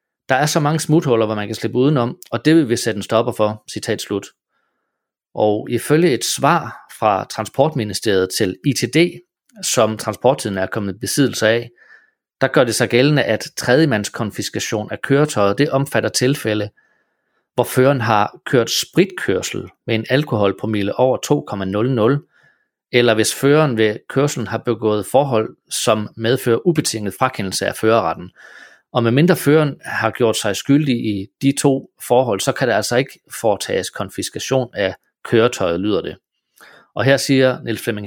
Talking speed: 155 wpm